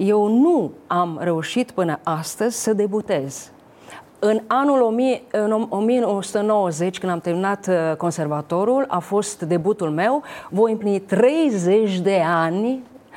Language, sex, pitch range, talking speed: Romanian, female, 190-265 Hz, 120 wpm